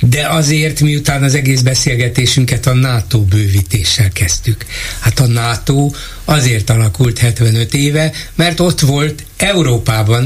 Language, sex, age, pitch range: Hungarian, male, 60-79, 110-145 Hz